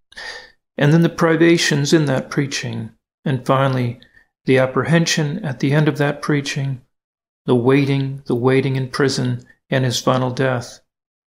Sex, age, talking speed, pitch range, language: male, 50-69, 145 wpm, 125-150 Hz, English